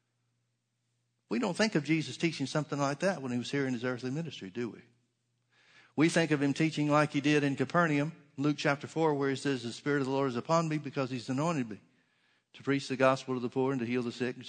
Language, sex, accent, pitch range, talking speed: English, male, American, 125-165 Hz, 250 wpm